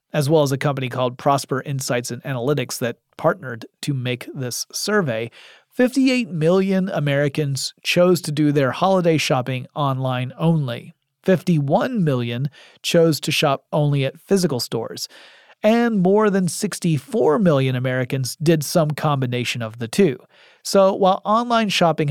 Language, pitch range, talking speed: English, 130-180 Hz, 140 wpm